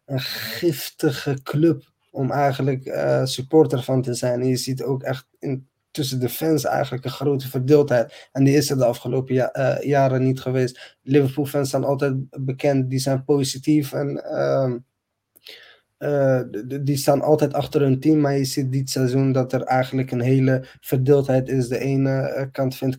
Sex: male